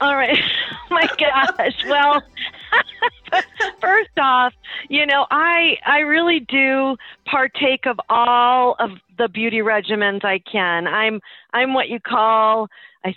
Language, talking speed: English, 130 wpm